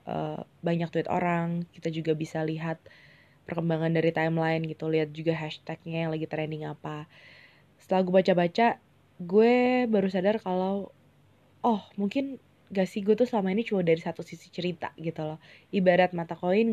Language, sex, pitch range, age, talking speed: Indonesian, female, 160-190 Hz, 20-39, 160 wpm